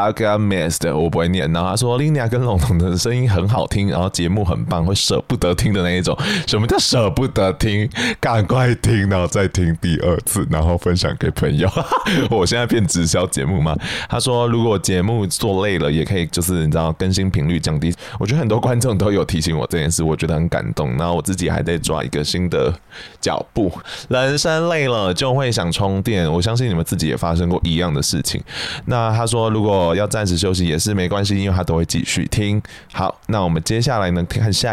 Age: 20-39